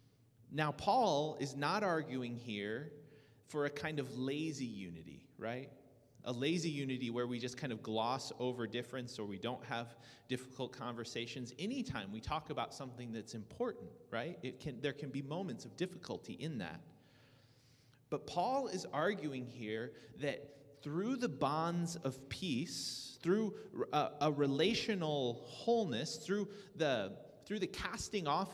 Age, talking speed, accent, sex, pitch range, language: 30-49, 145 wpm, American, male, 120-155 Hz, English